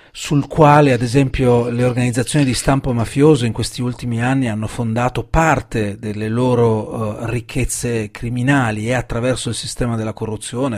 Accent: native